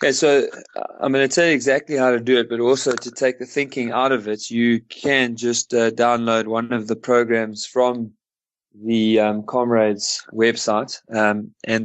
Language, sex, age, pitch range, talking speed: English, male, 20-39, 110-125 Hz, 185 wpm